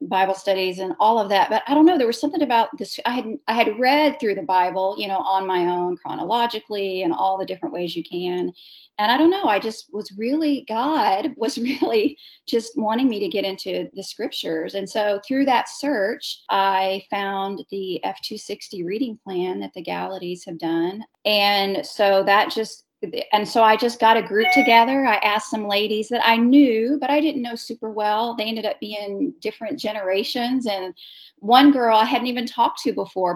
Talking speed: 200 wpm